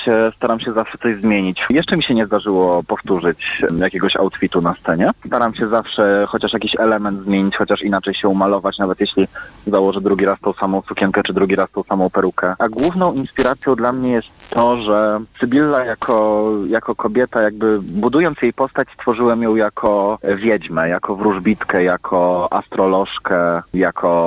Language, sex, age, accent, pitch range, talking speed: Polish, male, 30-49, native, 95-110 Hz, 160 wpm